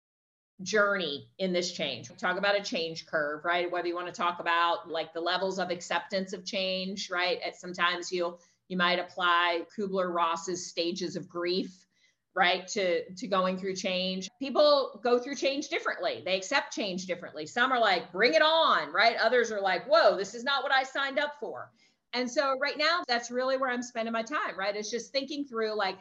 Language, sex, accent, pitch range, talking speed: English, female, American, 185-275 Hz, 200 wpm